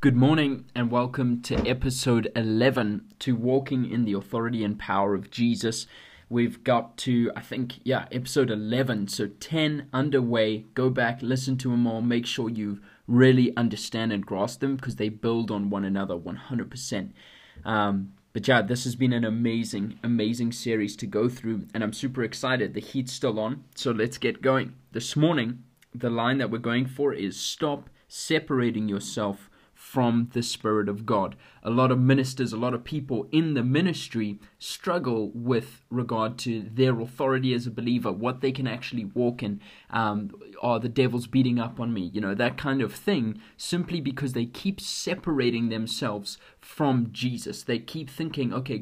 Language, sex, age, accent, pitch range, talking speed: English, male, 20-39, Australian, 110-130 Hz, 175 wpm